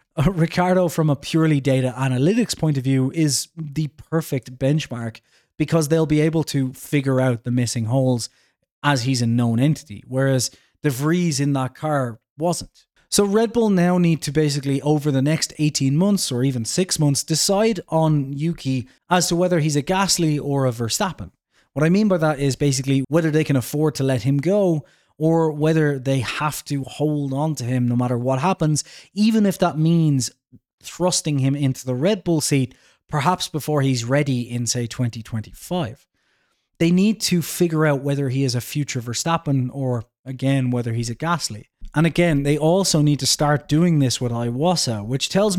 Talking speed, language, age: 185 wpm, English, 20-39